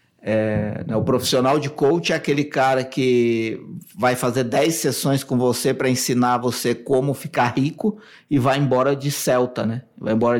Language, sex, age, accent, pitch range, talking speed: Portuguese, male, 50-69, Brazilian, 130-195 Hz, 175 wpm